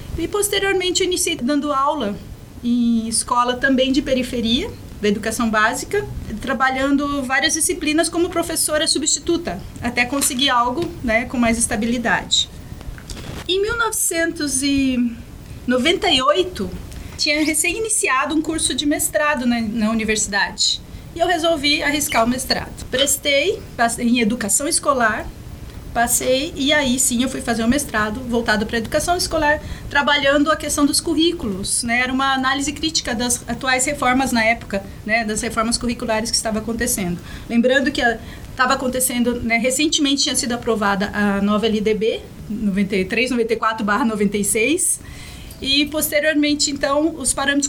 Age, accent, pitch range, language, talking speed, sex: 30-49, Brazilian, 230-295 Hz, Portuguese, 130 wpm, female